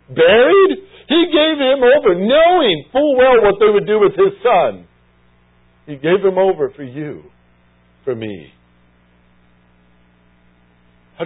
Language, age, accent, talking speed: English, 50-69, American, 130 wpm